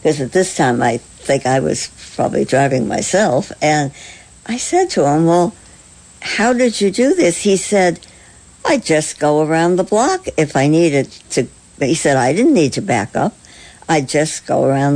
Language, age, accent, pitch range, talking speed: English, 60-79, American, 130-160 Hz, 185 wpm